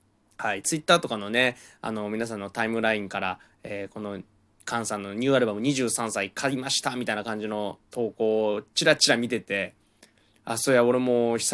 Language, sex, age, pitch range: Japanese, male, 20-39, 105-140 Hz